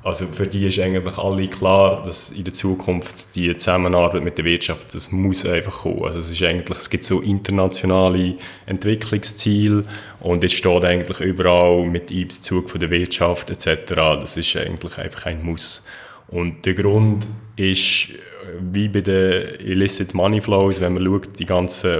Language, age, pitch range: German, 30-49, 90-100 Hz